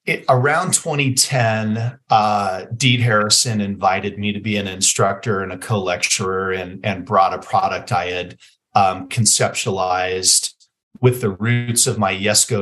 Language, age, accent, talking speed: English, 40-59, American, 145 wpm